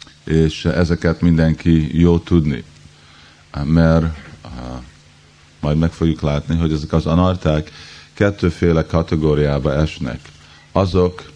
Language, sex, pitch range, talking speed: Hungarian, male, 75-85 Hz, 95 wpm